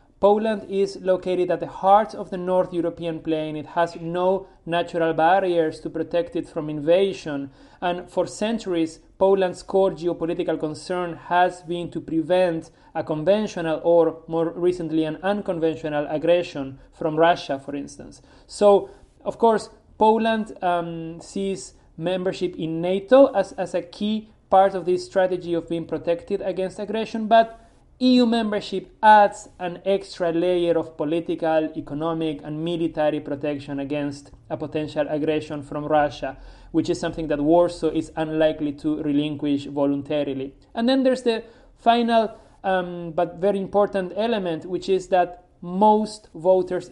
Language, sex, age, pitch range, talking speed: English, male, 40-59, 160-190 Hz, 140 wpm